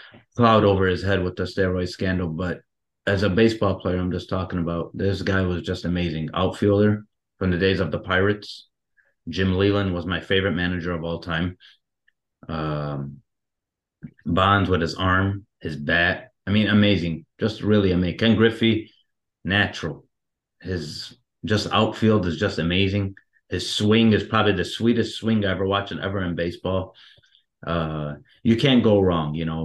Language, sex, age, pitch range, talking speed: English, male, 30-49, 85-105 Hz, 165 wpm